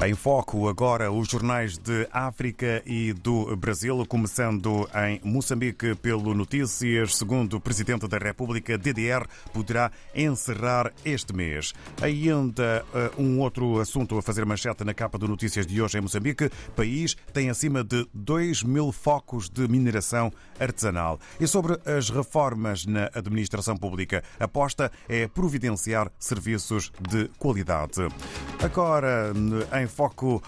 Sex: male